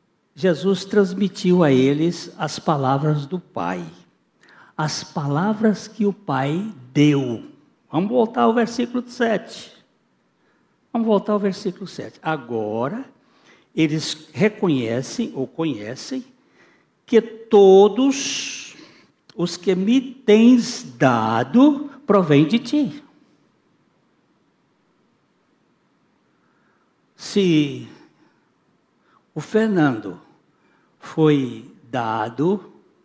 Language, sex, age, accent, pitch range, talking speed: Portuguese, male, 60-79, Brazilian, 150-220 Hz, 80 wpm